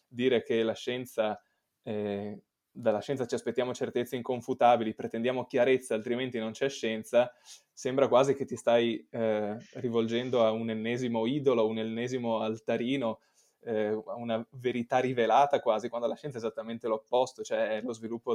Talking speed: 155 wpm